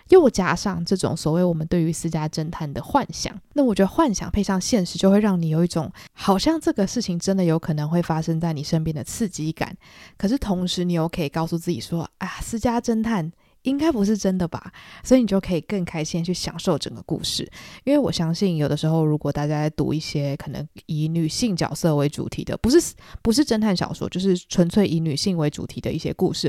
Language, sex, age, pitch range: Chinese, female, 20-39, 155-200 Hz